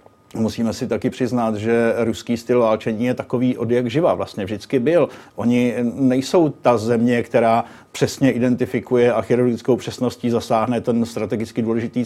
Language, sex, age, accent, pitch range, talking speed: Czech, male, 50-69, native, 115-130 Hz, 145 wpm